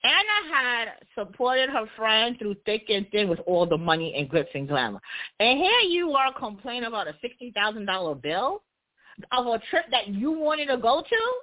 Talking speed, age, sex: 185 wpm, 40-59, female